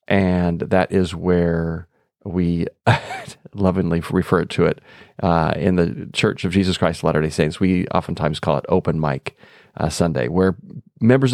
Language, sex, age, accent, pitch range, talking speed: English, male, 40-59, American, 90-110 Hz, 155 wpm